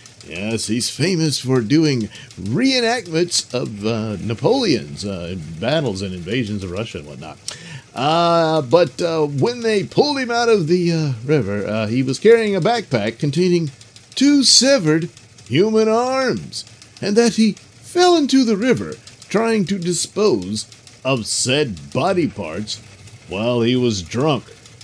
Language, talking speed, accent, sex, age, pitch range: English, 140 wpm, American, male, 50-69, 115-180 Hz